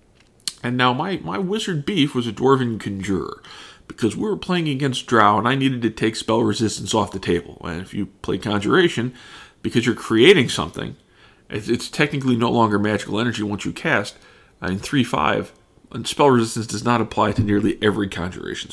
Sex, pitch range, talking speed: male, 105-125 Hz, 185 wpm